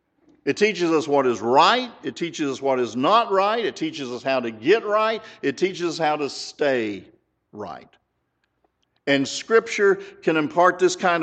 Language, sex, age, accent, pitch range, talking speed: English, male, 50-69, American, 120-170 Hz, 175 wpm